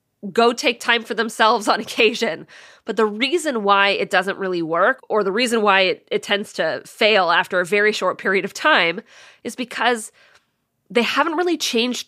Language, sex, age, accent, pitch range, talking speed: English, female, 20-39, American, 200-255 Hz, 185 wpm